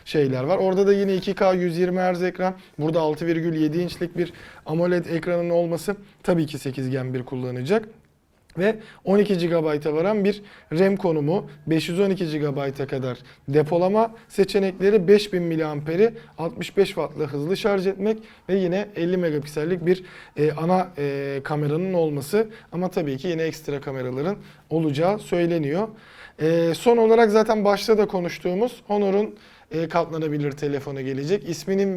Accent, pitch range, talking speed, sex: native, 155-195 Hz, 130 wpm, male